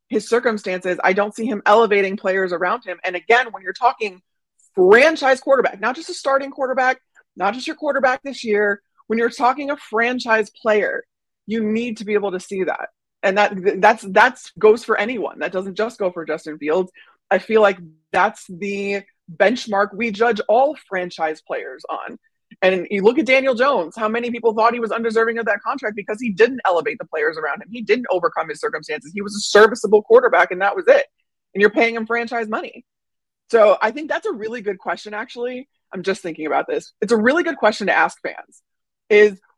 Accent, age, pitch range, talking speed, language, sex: American, 20-39, 195-245 Hz, 205 wpm, English, female